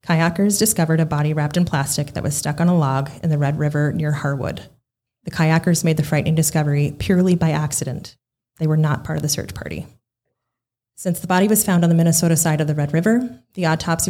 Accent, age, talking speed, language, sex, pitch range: American, 30-49, 215 wpm, English, female, 140-170 Hz